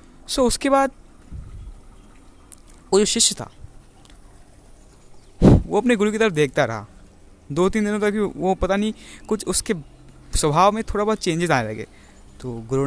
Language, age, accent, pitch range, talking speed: Hindi, 20-39, native, 130-200 Hz, 150 wpm